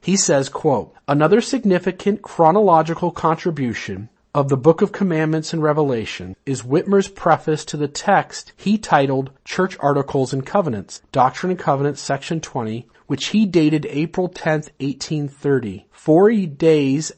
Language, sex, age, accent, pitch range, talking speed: English, male, 40-59, American, 130-165 Hz, 140 wpm